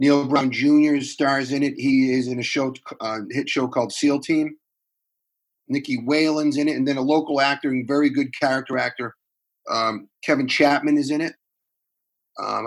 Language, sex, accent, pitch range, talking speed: English, male, American, 120-150 Hz, 180 wpm